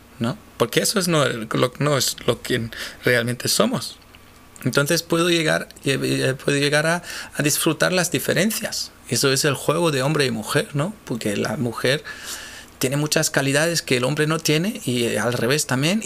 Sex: male